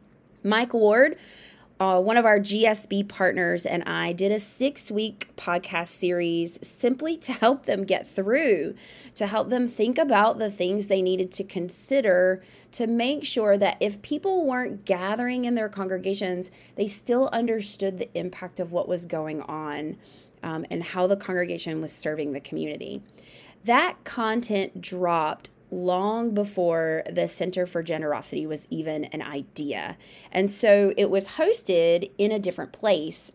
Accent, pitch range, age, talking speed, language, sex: American, 180-220 Hz, 20-39, 150 wpm, English, female